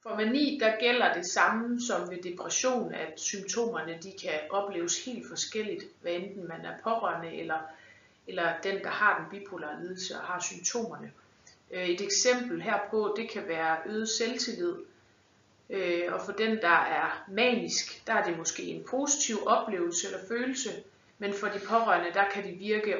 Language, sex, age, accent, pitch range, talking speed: Danish, female, 30-49, native, 185-230 Hz, 165 wpm